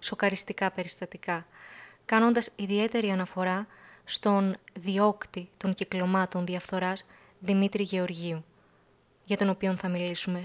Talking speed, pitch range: 100 wpm, 185-220 Hz